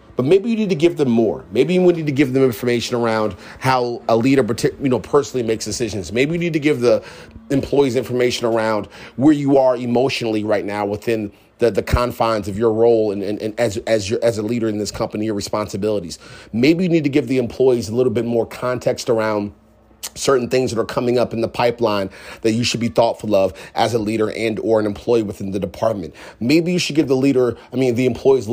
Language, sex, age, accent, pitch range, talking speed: English, male, 30-49, American, 110-130 Hz, 230 wpm